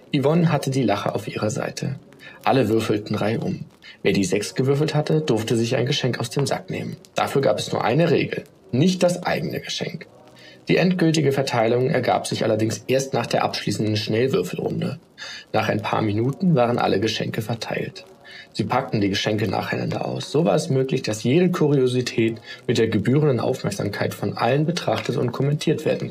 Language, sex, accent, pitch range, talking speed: German, male, German, 110-140 Hz, 170 wpm